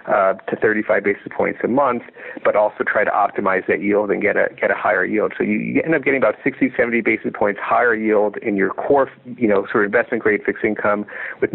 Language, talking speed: English, 235 wpm